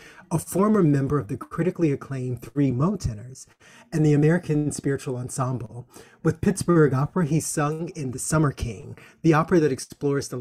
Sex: male